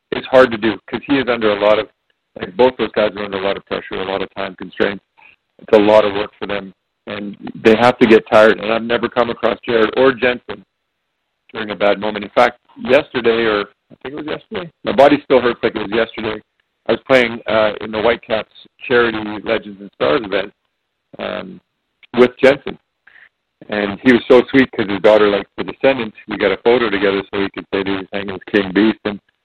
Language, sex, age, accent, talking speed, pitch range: English, male, 50-69, American, 225 wpm, 105-125 Hz